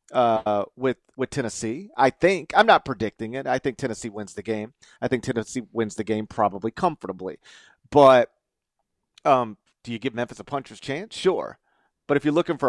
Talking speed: 185 wpm